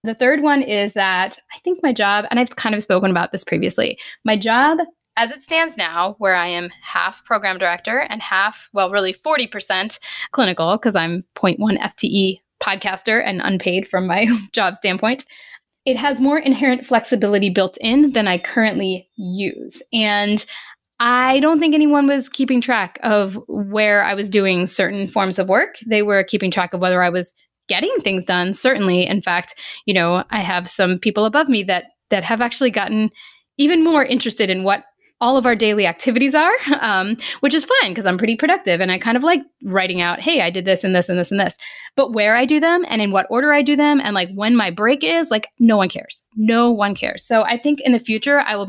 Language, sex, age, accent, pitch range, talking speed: English, female, 10-29, American, 190-260 Hz, 210 wpm